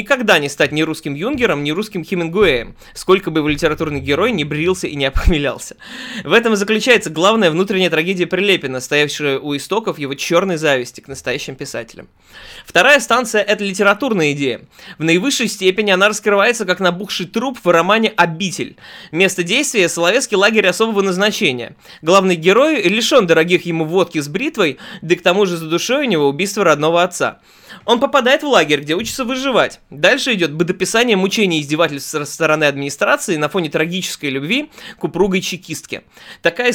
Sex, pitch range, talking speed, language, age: male, 150-205 Hz, 170 wpm, Russian, 20-39